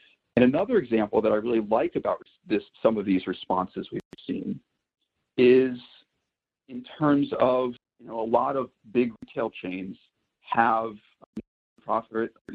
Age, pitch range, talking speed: 50-69, 100-120 Hz, 145 wpm